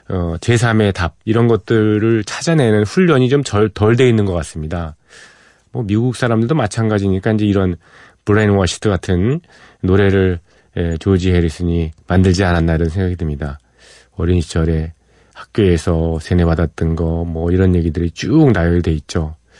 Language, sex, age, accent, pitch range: Korean, male, 40-59, native, 85-110 Hz